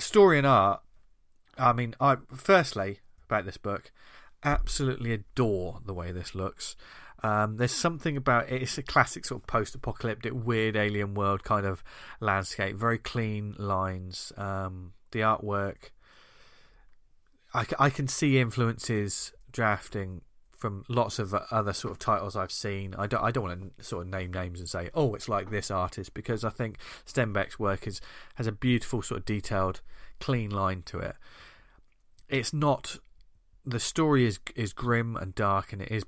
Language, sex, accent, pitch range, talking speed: English, male, British, 95-120 Hz, 165 wpm